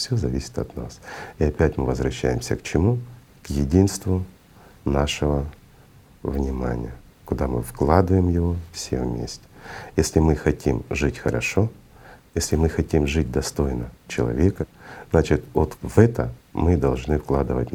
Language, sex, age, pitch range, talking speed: Russian, male, 50-69, 70-95 Hz, 130 wpm